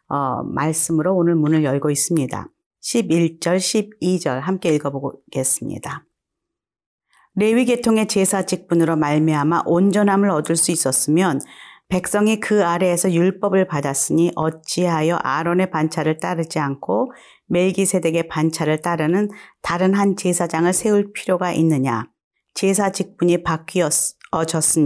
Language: Korean